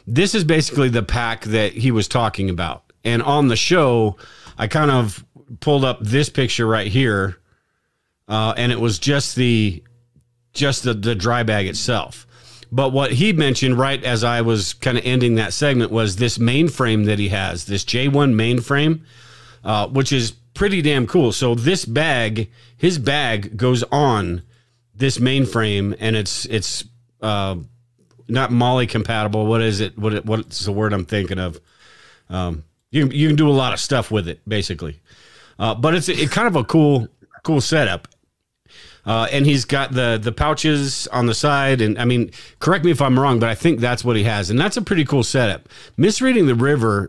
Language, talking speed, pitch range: English, 185 wpm, 110-140 Hz